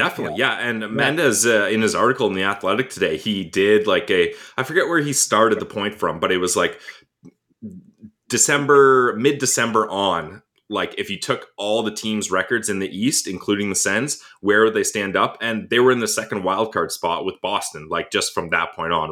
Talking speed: 210 wpm